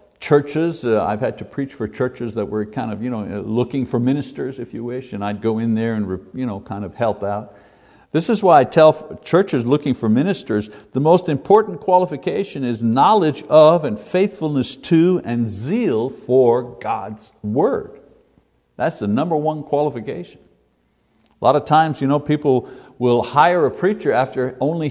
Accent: American